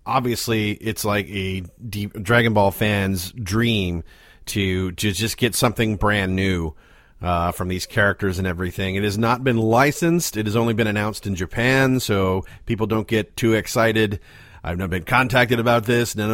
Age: 40-59